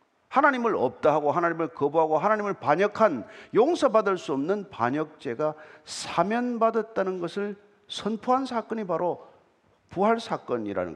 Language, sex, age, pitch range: Korean, male, 50-69, 200-260 Hz